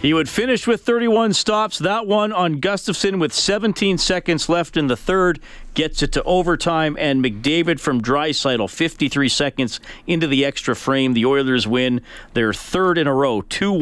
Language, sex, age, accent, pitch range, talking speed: English, male, 40-59, American, 135-180 Hz, 170 wpm